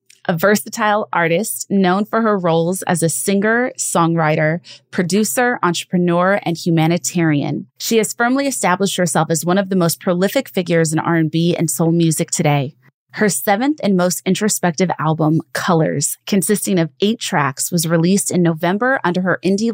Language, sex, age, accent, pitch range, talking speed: English, female, 30-49, American, 165-200 Hz, 155 wpm